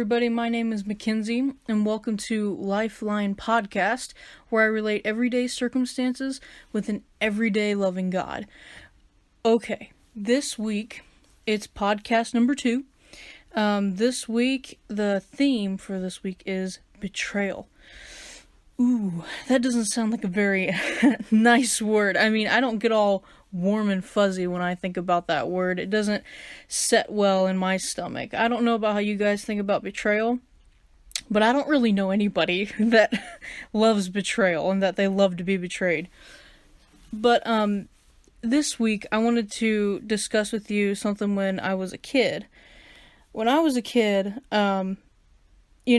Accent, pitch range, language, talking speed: American, 195-235 Hz, English, 155 wpm